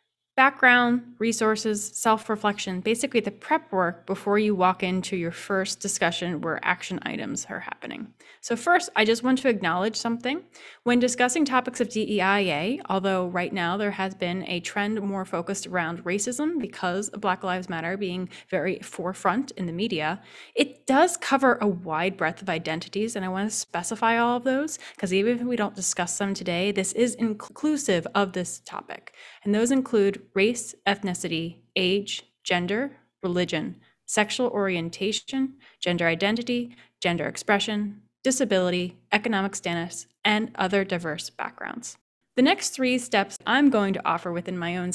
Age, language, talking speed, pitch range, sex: 20-39, English, 155 wpm, 180-235 Hz, female